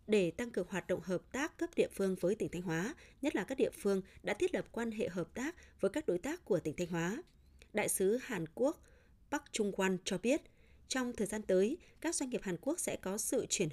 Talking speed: 245 wpm